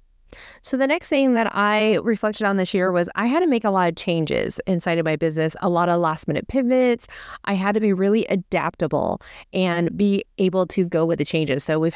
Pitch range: 170-215 Hz